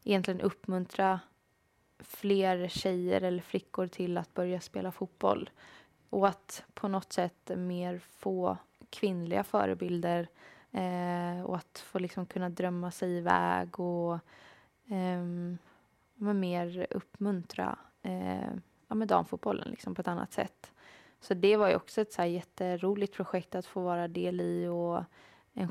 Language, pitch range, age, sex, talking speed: Swedish, 175-190 Hz, 20-39, female, 120 wpm